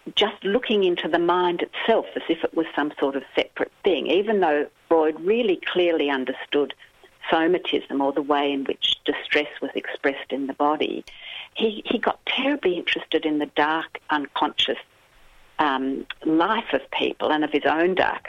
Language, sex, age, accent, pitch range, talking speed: English, female, 50-69, Australian, 145-190 Hz, 165 wpm